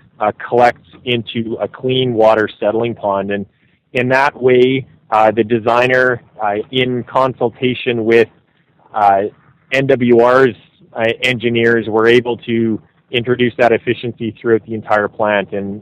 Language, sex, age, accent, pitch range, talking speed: English, male, 30-49, American, 110-125 Hz, 130 wpm